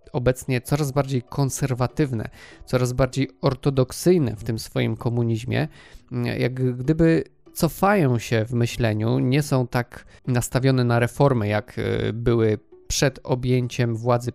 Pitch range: 120-145 Hz